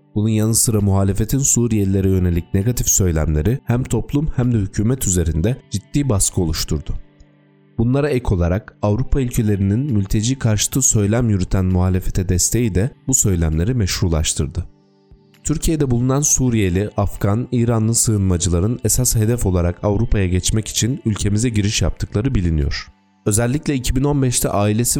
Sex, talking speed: male, 120 wpm